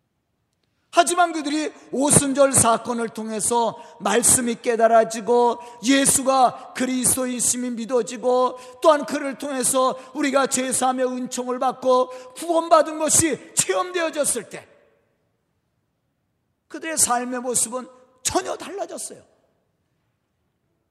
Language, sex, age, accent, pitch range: Korean, male, 40-59, native, 235-310 Hz